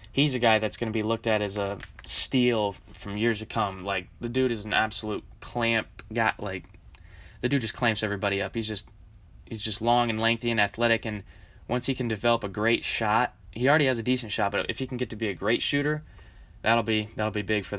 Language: English